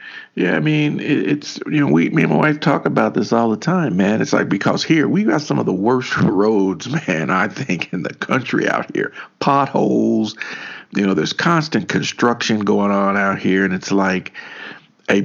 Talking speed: 195 wpm